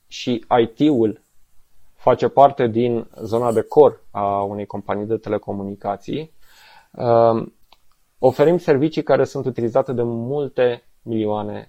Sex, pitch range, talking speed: male, 110-135 Hz, 110 wpm